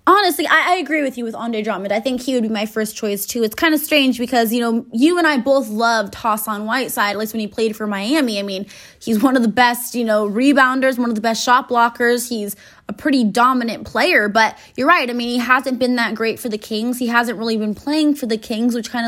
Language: English